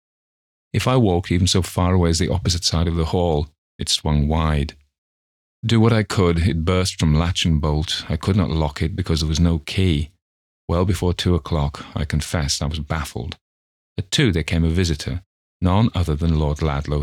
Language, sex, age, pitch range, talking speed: English, male, 40-59, 75-95 Hz, 200 wpm